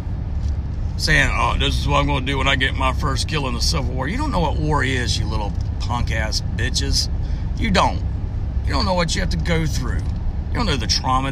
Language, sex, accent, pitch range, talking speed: English, male, American, 80-95 Hz, 240 wpm